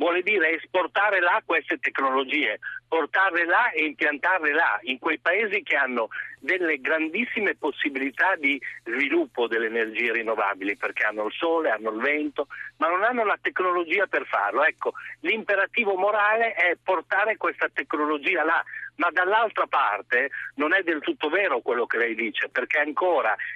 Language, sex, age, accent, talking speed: Italian, male, 50-69, native, 155 wpm